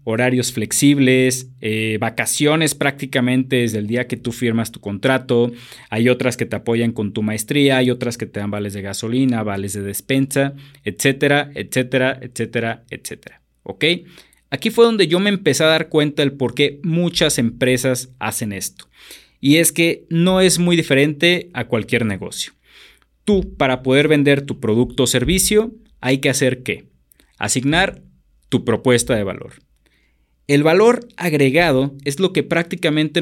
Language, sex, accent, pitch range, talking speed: Spanish, male, Mexican, 115-150 Hz, 155 wpm